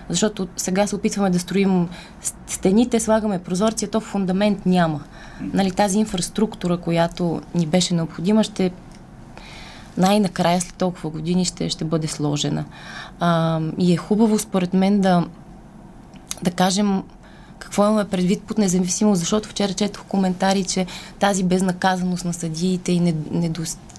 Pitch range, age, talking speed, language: 170-205 Hz, 20-39, 135 wpm, Bulgarian